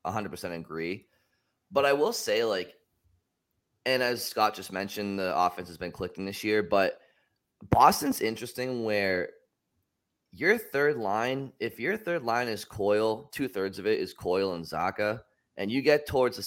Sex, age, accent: male, 20-39, American